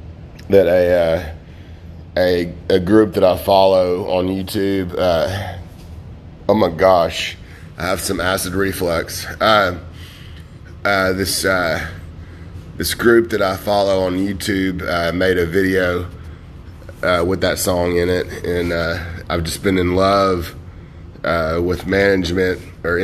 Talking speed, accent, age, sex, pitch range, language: 135 wpm, American, 30-49, male, 85-95 Hz, English